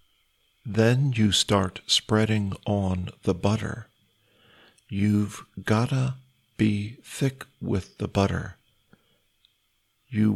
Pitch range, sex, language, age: 100-115 Hz, male, Thai, 50-69